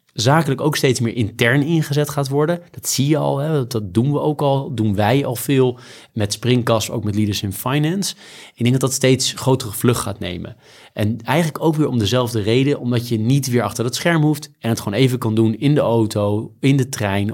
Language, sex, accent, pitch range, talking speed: Dutch, male, Dutch, 110-135 Hz, 225 wpm